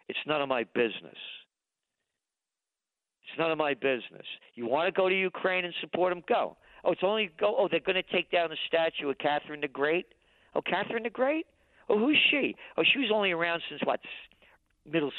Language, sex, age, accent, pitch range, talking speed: English, male, 50-69, American, 145-205 Hz, 200 wpm